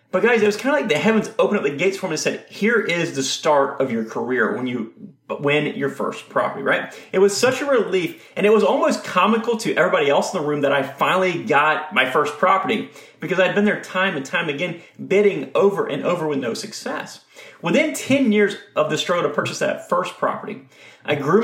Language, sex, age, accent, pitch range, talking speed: English, male, 30-49, American, 145-220 Hz, 230 wpm